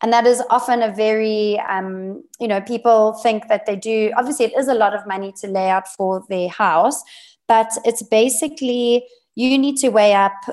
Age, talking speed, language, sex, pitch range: 20-39, 200 wpm, English, female, 195-230 Hz